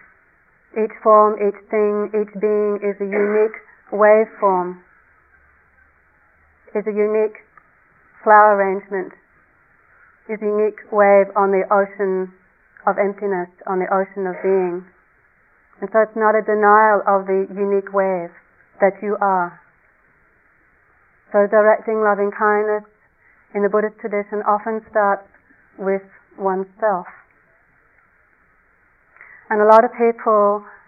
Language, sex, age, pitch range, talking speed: English, female, 40-59, 195-210 Hz, 115 wpm